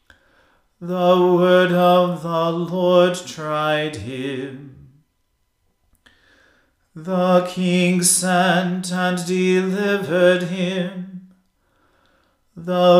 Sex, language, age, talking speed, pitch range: male, English, 40-59, 65 wpm, 175-185 Hz